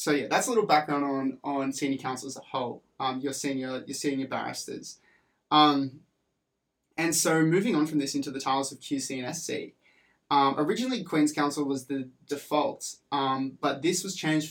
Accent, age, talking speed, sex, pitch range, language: Australian, 20-39, 185 wpm, male, 135-155 Hz, English